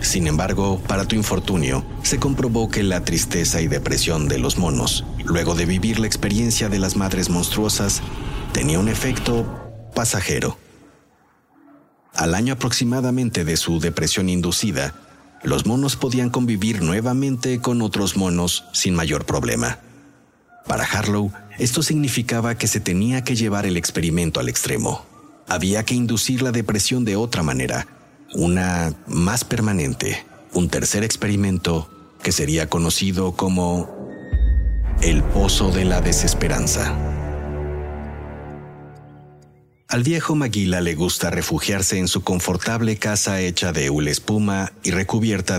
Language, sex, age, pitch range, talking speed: Spanish, male, 50-69, 85-115 Hz, 130 wpm